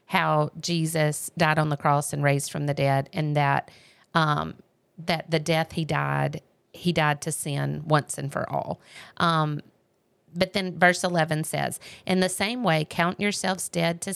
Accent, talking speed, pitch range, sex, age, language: American, 175 wpm, 155-185 Hz, female, 40-59, English